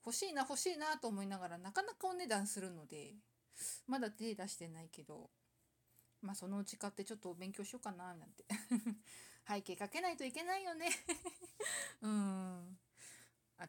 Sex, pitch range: female, 185-245 Hz